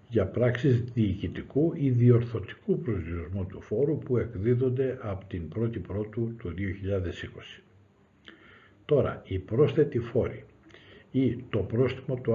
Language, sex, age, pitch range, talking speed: Greek, male, 60-79, 95-120 Hz, 115 wpm